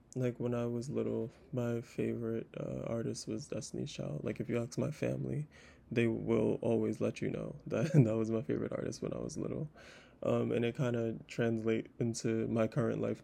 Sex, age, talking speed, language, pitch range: male, 20-39, 200 wpm, English, 115-130 Hz